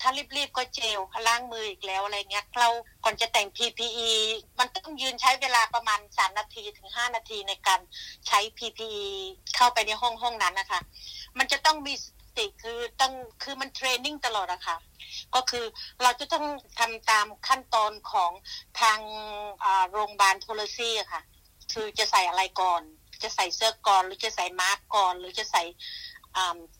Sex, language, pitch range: female, Thai, 205-270 Hz